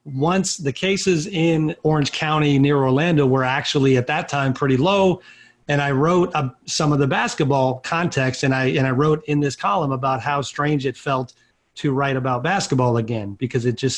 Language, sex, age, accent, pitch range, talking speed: English, male, 40-59, American, 135-155 Hz, 195 wpm